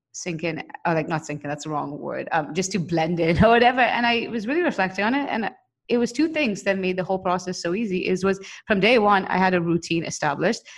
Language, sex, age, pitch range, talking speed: English, female, 30-49, 160-195 Hz, 250 wpm